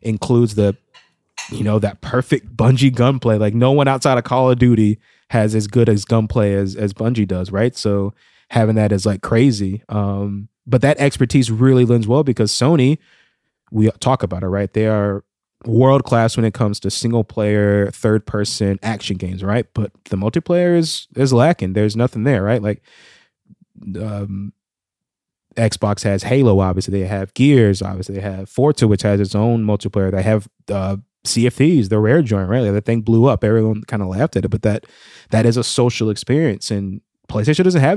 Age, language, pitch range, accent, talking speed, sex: 20-39, English, 105-125 Hz, American, 185 wpm, male